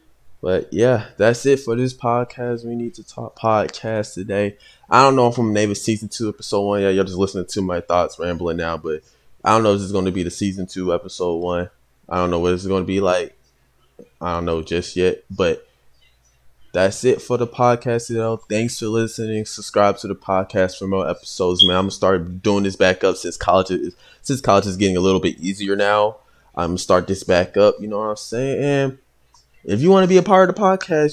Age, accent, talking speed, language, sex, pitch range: 20-39, American, 235 wpm, English, male, 90-120 Hz